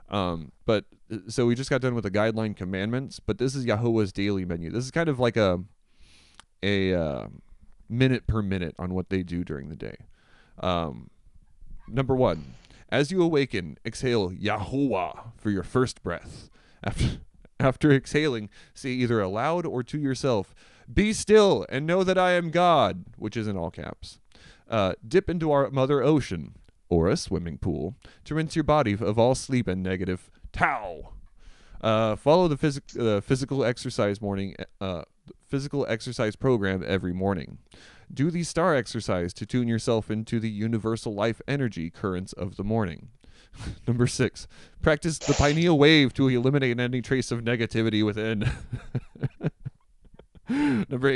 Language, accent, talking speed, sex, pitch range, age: English, American, 155 wpm, male, 100-135 Hz, 30-49